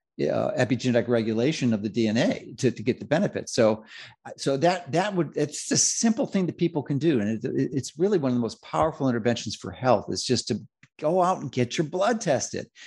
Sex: male